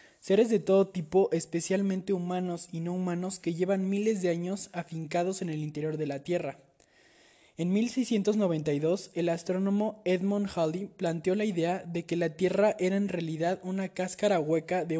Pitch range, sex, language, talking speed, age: 160-190 Hz, male, Spanish, 165 wpm, 20-39